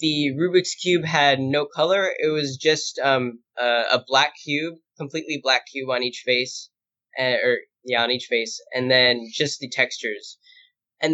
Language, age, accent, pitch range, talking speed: English, 10-29, American, 125-155 Hz, 170 wpm